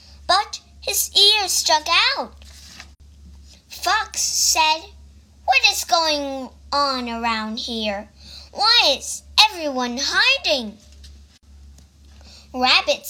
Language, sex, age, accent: Chinese, male, 10-29, American